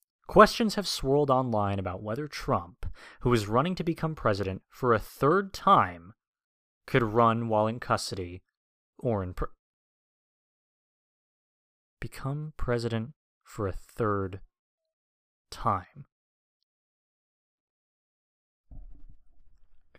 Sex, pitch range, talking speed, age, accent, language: male, 100-150 Hz, 90 wpm, 20-39, American, English